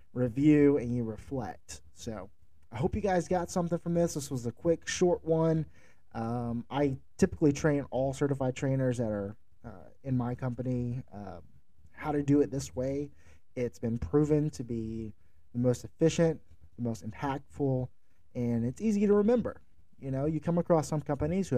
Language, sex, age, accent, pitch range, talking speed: English, male, 30-49, American, 115-150 Hz, 175 wpm